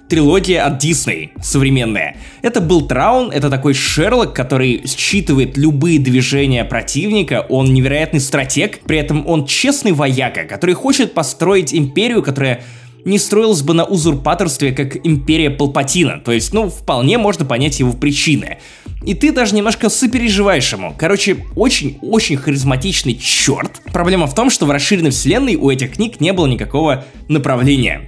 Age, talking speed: 20-39, 145 wpm